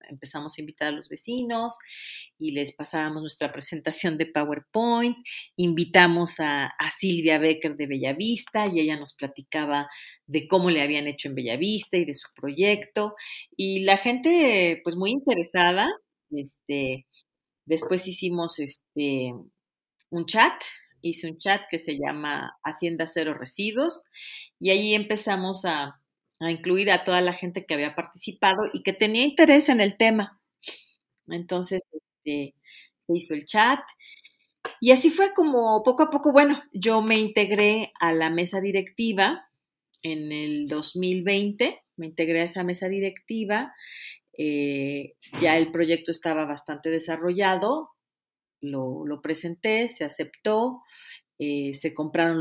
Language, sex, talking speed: Spanish, female, 135 wpm